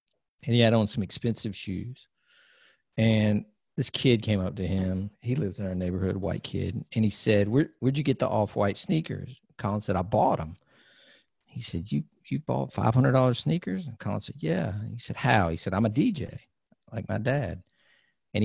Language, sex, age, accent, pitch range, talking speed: English, male, 50-69, American, 100-125 Hz, 195 wpm